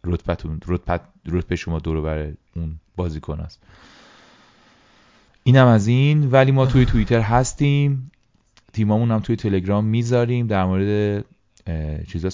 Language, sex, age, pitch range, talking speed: Persian, male, 30-49, 80-95 Hz, 105 wpm